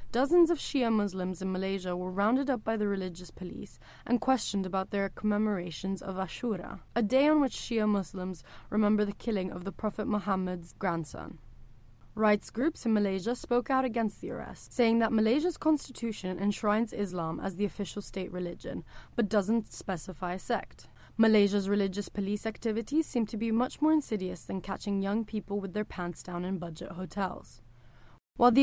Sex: female